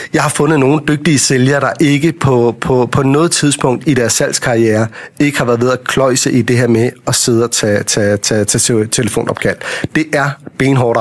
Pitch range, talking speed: 125-160 Hz, 200 wpm